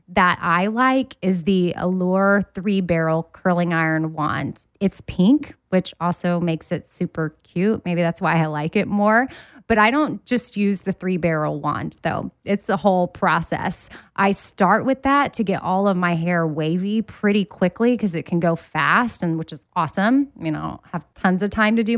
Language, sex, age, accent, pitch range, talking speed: English, female, 20-39, American, 170-210 Hz, 195 wpm